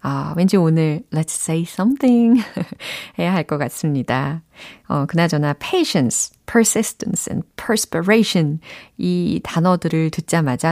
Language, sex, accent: Korean, female, native